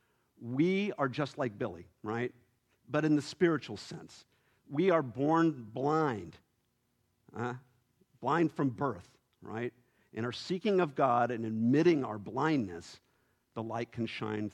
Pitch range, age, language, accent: 100-125 Hz, 50-69, English, American